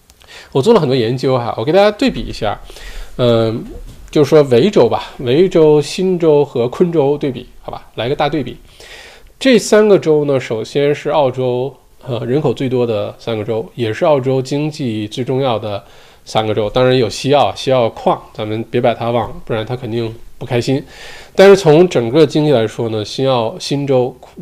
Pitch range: 120-170 Hz